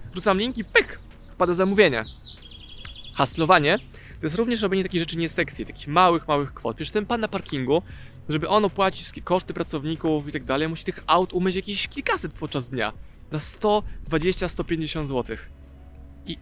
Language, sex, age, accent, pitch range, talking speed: Polish, male, 20-39, native, 145-190 Hz, 165 wpm